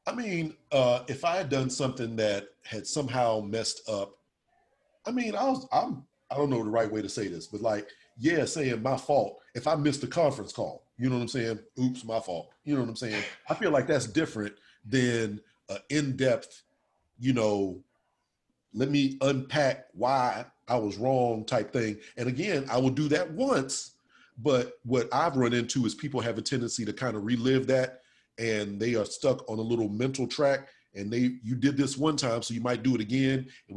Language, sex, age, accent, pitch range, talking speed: English, male, 40-59, American, 110-135 Hz, 210 wpm